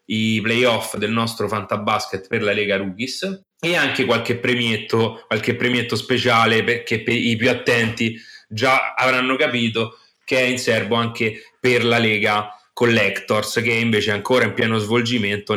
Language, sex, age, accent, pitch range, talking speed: Italian, male, 30-49, native, 110-130 Hz, 160 wpm